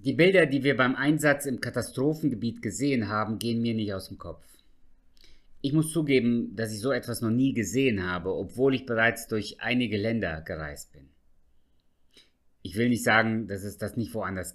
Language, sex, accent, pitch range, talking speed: German, male, German, 105-140 Hz, 180 wpm